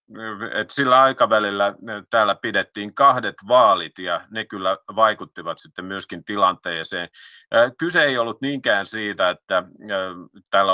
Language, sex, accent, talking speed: Finnish, male, native, 115 wpm